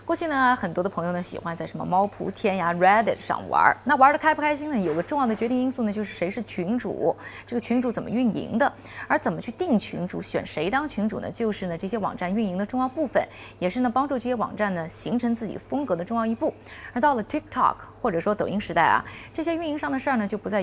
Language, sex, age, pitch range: Chinese, female, 20-39, 200-270 Hz